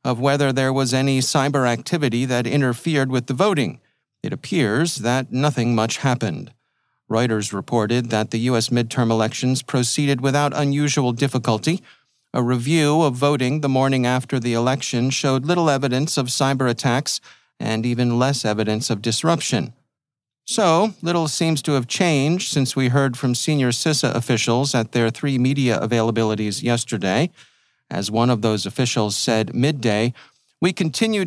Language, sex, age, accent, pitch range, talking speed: English, male, 40-59, American, 120-150 Hz, 150 wpm